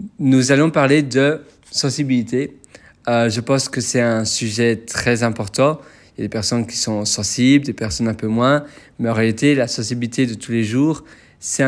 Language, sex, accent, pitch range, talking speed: French, male, French, 115-140 Hz, 190 wpm